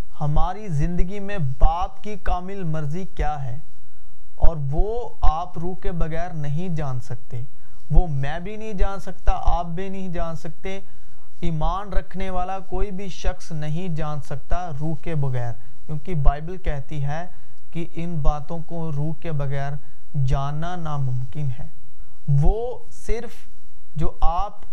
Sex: male